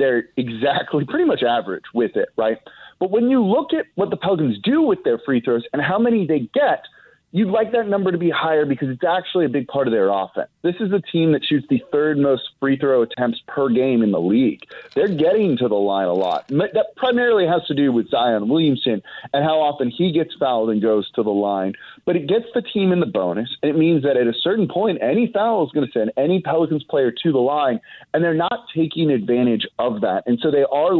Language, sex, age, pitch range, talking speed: English, male, 30-49, 130-200 Hz, 240 wpm